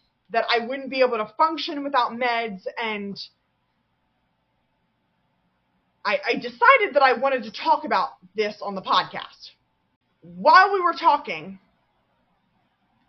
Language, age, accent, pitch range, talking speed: English, 20-39, American, 200-290 Hz, 125 wpm